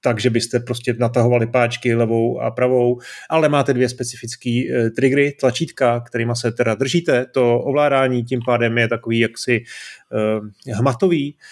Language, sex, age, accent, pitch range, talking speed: Czech, male, 30-49, native, 115-140 Hz, 145 wpm